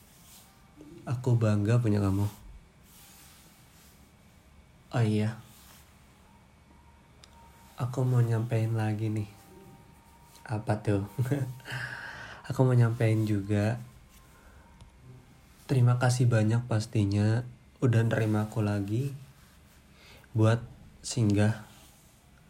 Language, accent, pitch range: Indonesian, native, 105-120 Hz